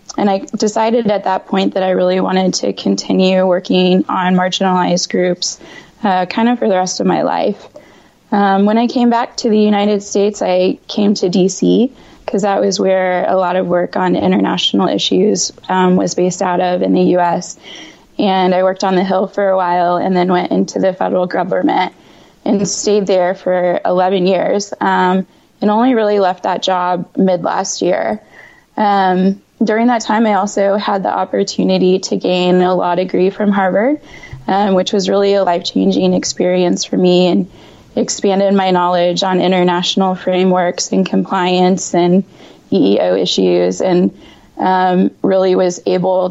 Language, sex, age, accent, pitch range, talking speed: English, female, 20-39, American, 180-200 Hz, 170 wpm